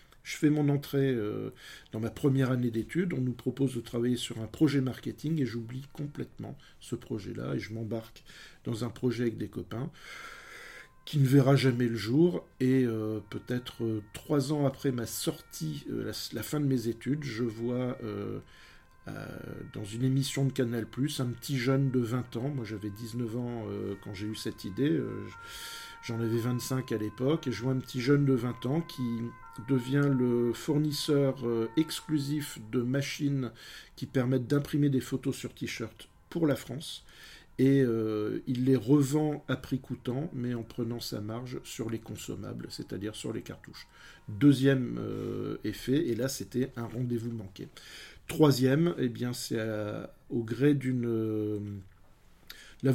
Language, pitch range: French, 115-140 Hz